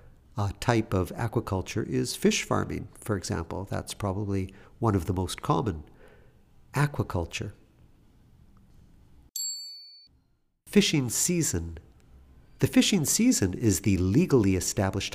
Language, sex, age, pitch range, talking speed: English, male, 50-69, 95-120 Hz, 105 wpm